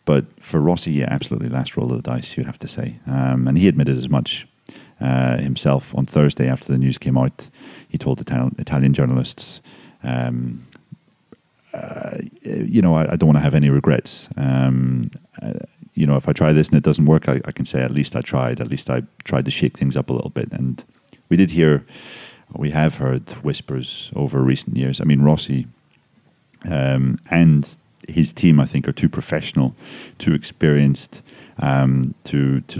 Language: English